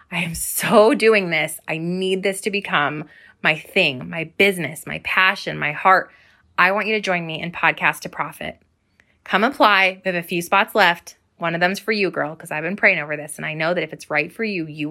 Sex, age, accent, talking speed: female, 20-39, American, 235 wpm